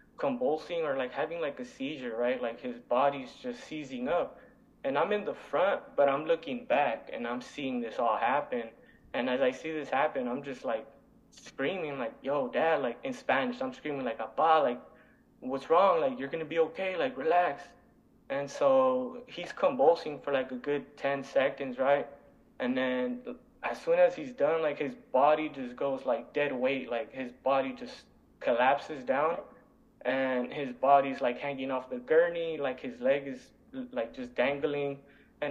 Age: 20-39